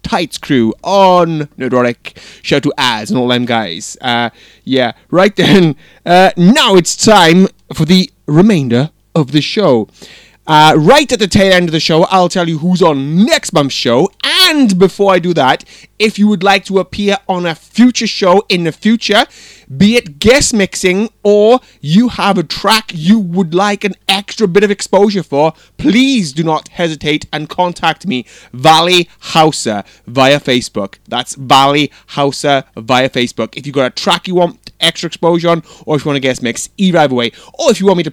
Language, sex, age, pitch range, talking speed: English, male, 30-49, 150-205 Hz, 190 wpm